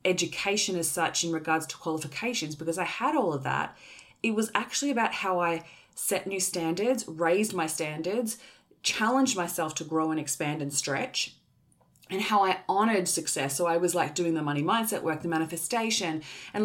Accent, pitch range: Australian, 165-210 Hz